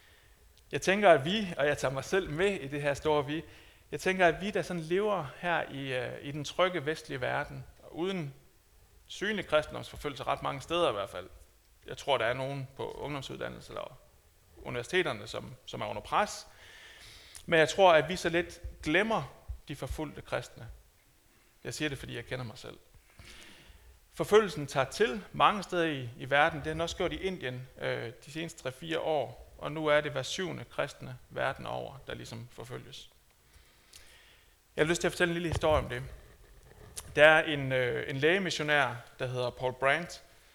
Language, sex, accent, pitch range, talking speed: Danish, male, native, 125-170 Hz, 185 wpm